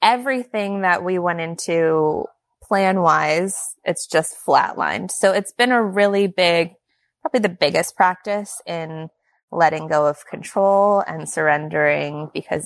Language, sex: English, female